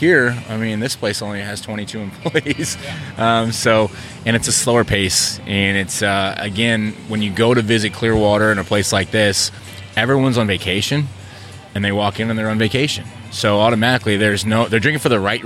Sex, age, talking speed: male, 20-39, 200 wpm